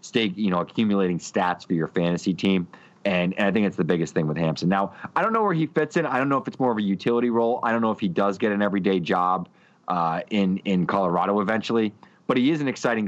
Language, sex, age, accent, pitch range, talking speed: English, male, 30-49, American, 90-110 Hz, 260 wpm